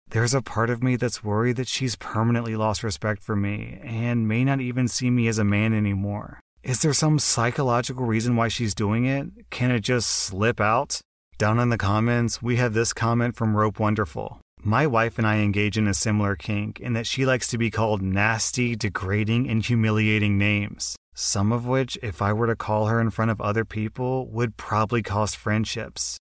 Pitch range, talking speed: 105-120 Hz, 200 wpm